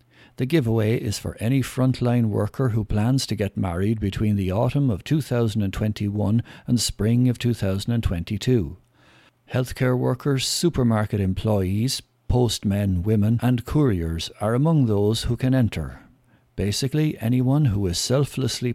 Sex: male